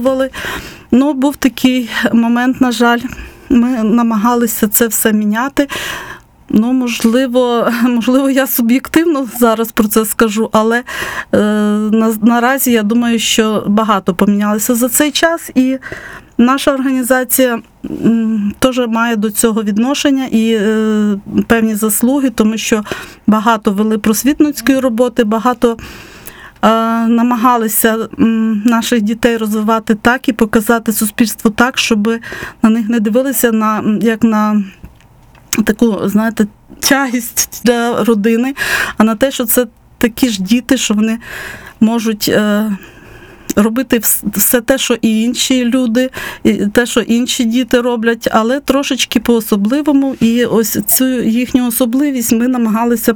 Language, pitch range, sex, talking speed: Ukrainian, 225-255 Hz, female, 120 wpm